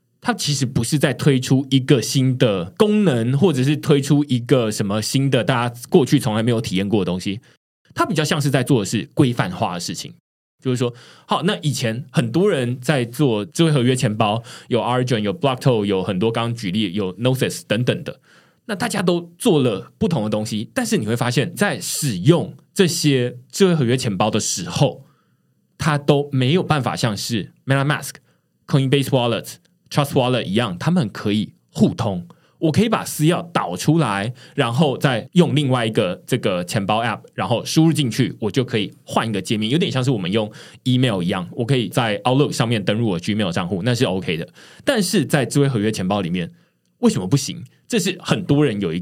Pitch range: 120-160 Hz